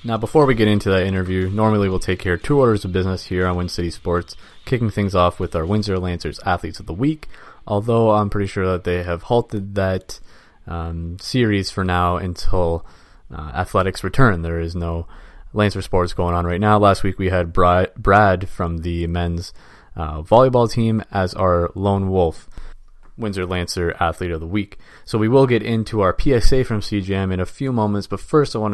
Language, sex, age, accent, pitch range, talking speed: English, male, 20-39, American, 85-105 Hz, 200 wpm